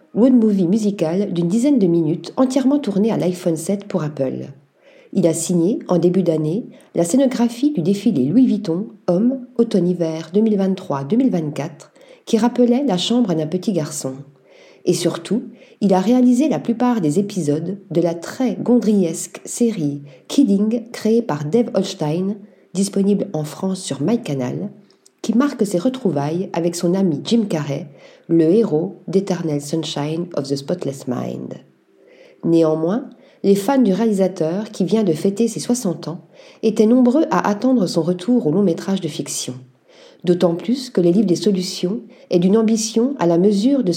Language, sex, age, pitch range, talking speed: French, female, 50-69, 165-230 Hz, 160 wpm